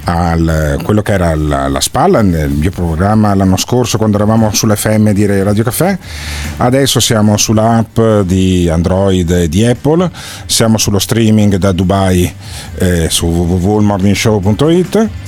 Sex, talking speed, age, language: male, 135 wpm, 40-59, Italian